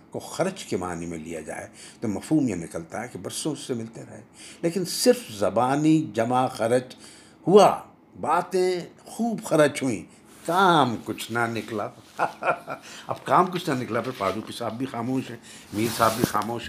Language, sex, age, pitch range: Urdu, male, 60-79, 105-170 Hz